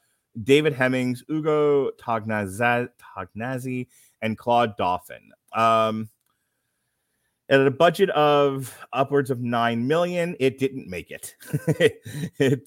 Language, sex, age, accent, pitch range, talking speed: English, male, 30-49, American, 105-140 Hz, 105 wpm